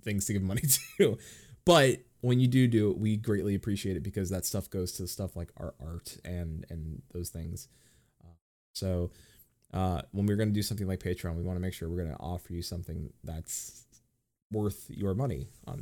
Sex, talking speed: male, 210 wpm